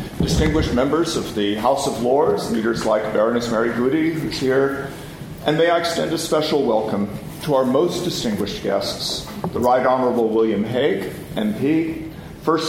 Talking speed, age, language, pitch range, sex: 155 wpm, 50-69, English, 110-145 Hz, male